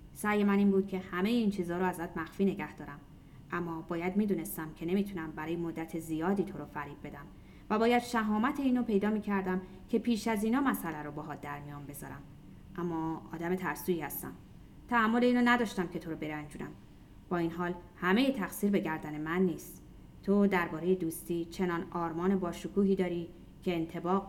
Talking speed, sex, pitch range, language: 175 wpm, female, 170-225 Hz, Persian